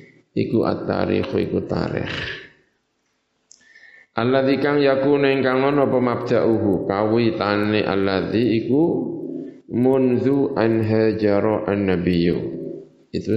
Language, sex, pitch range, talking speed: Indonesian, male, 90-110 Hz, 75 wpm